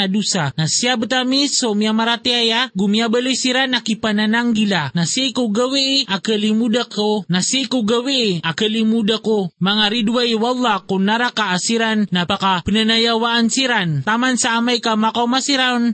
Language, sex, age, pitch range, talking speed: Filipino, male, 20-39, 195-235 Hz, 130 wpm